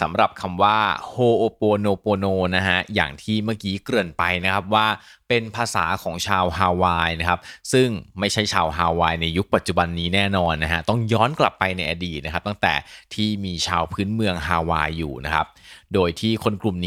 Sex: male